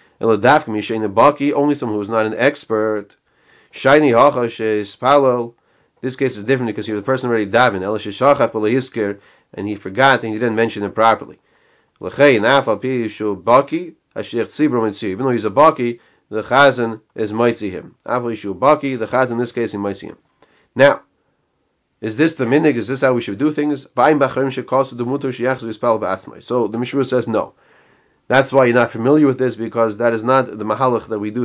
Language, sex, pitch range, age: English, male, 110-135 Hz, 40-59